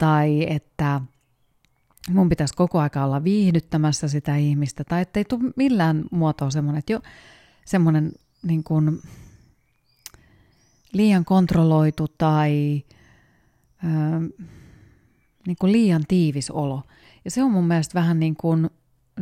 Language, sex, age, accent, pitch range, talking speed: Finnish, female, 30-49, native, 140-180 Hz, 105 wpm